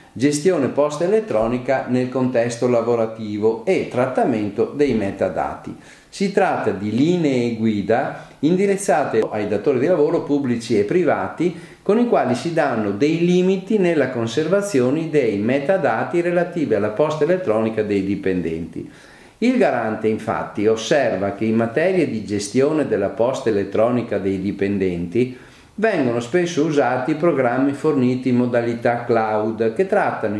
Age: 50-69